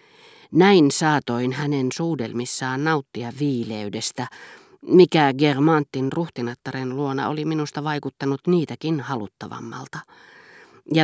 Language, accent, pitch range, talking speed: Finnish, native, 125-160 Hz, 85 wpm